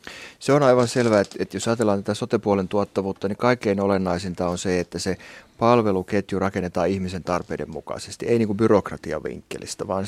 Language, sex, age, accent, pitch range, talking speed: Finnish, male, 30-49, native, 90-105 Hz, 155 wpm